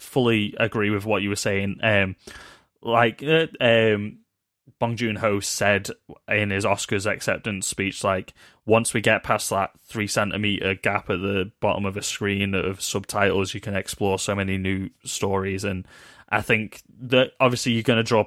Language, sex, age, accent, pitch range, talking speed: English, male, 20-39, British, 95-105 Hz, 170 wpm